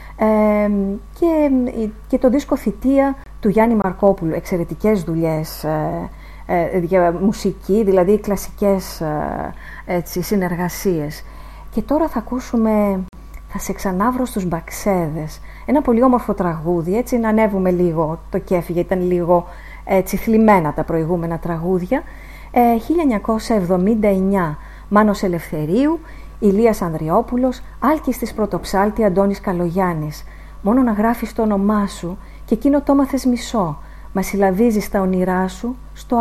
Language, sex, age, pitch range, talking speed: English, female, 30-49, 180-230 Hz, 125 wpm